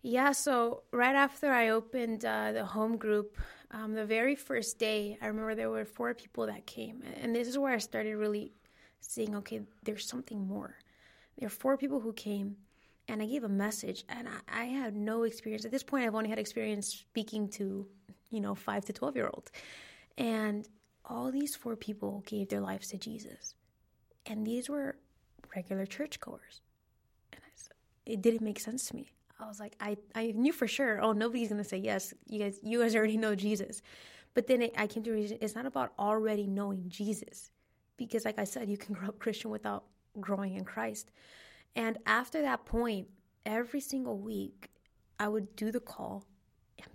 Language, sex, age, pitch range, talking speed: English, female, 20-39, 200-230 Hz, 190 wpm